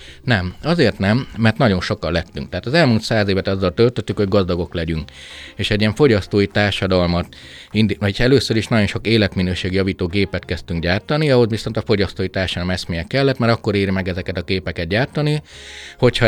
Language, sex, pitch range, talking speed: Hungarian, male, 90-115 Hz, 175 wpm